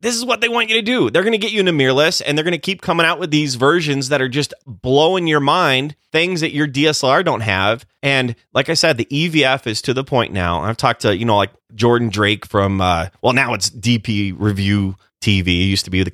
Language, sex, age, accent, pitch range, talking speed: English, male, 30-49, American, 105-155 Hz, 260 wpm